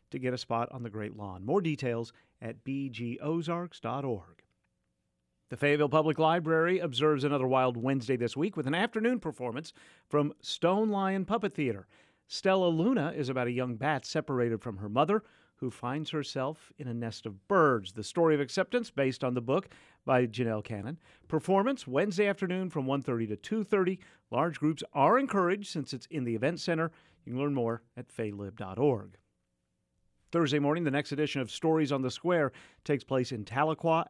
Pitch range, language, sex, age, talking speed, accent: 115-165 Hz, English, male, 50-69, 170 wpm, American